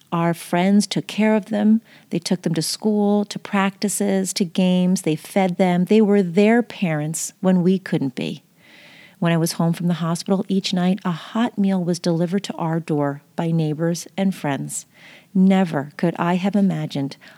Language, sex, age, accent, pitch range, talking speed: English, female, 40-59, American, 170-205 Hz, 180 wpm